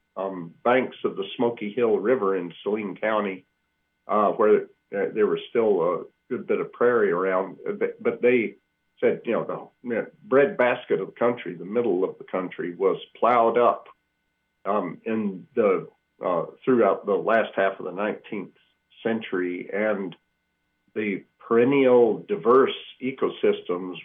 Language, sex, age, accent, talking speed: English, male, 50-69, American, 145 wpm